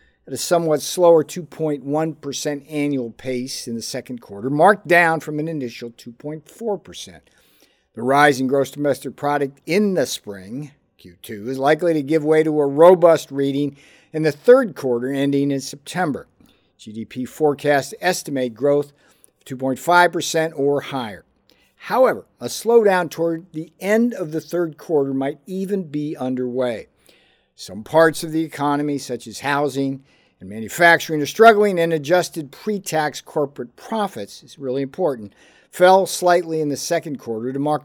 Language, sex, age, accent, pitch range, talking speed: English, male, 50-69, American, 130-170 Hz, 150 wpm